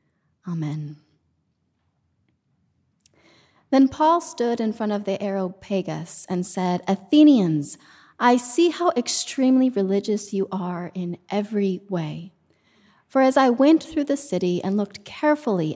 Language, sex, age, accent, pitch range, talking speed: English, female, 30-49, American, 175-245 Hz, 120 wpm